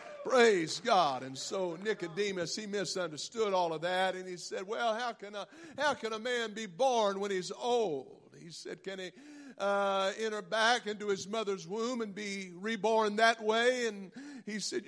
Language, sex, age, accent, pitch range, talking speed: English, male, 50-69, American, 175-225 Hz, 175 wpm